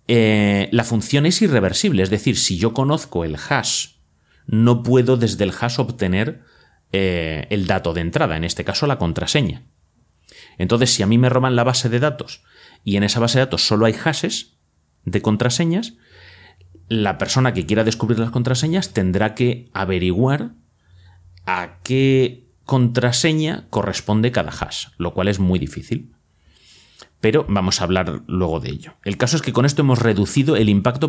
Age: 30-49